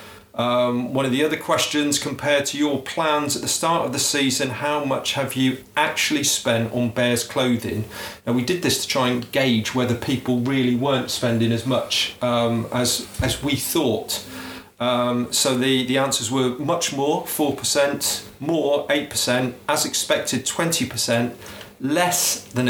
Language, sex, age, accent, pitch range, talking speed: English, male, 40-59, British, 115-140 Hz, 160 wpm